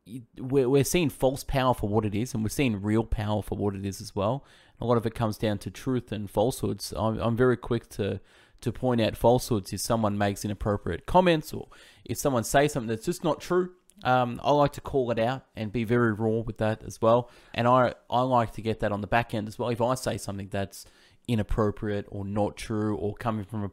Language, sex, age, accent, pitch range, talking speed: English, male, 20-39, Australian, 105-130 Hz, 235 wpm